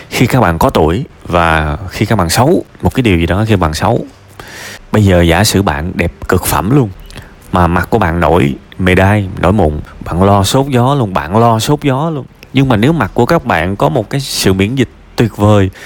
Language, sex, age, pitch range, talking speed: Vietnamese, male, 30-49, 100-150 Hz, 230 wpm